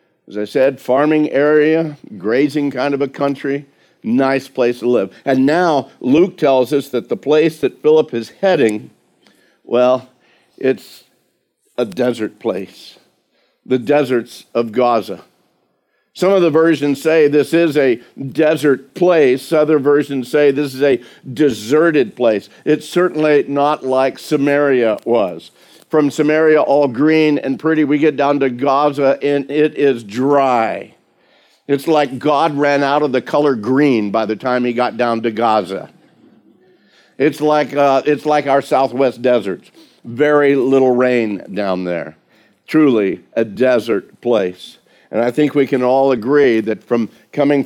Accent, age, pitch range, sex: American, 50-69, 125-150 Hz, male